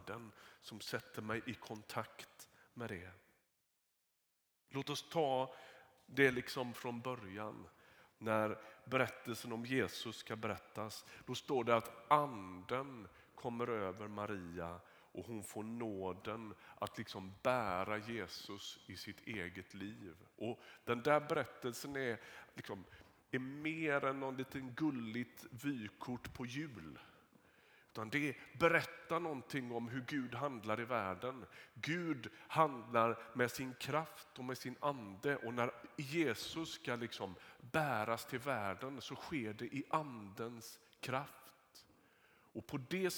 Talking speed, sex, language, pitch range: 125 wpm, male, Swedish, 105-135 Hz